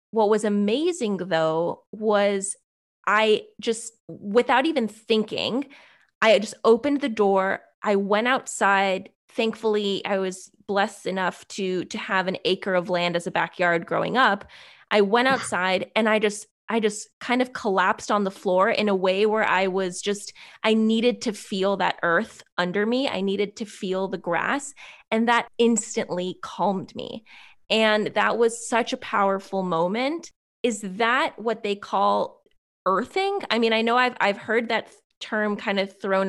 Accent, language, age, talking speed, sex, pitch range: American, English, 20-39, 165 wpm, female, 185-225 Hz